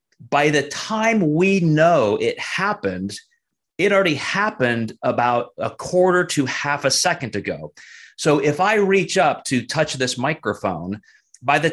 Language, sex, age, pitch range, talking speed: English, male, 30-49, 125-175 Hz, 150 wpm